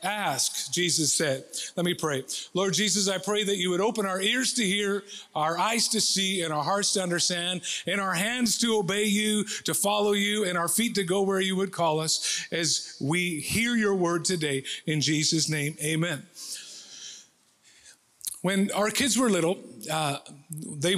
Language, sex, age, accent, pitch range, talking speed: English, male, 40-59, American, 170-210 Hz, 180 wpm